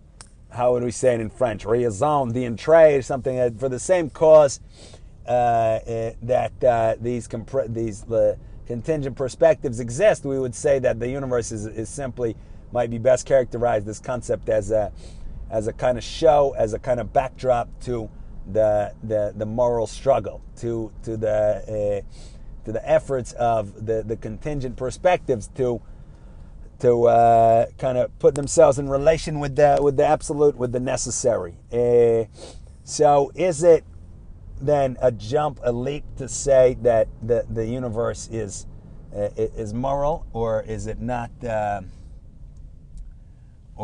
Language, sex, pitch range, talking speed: English, male, 105-130 Hz, 155 wpm